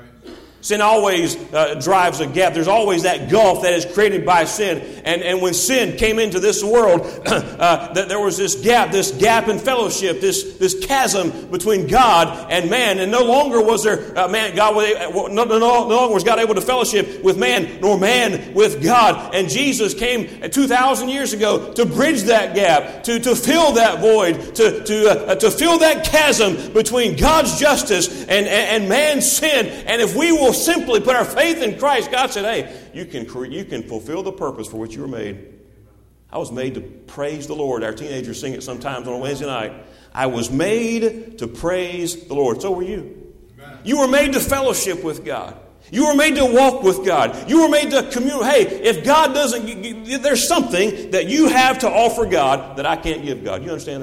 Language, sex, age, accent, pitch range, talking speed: English, male, 40-59, American, 165-255 Hz, 205 wpm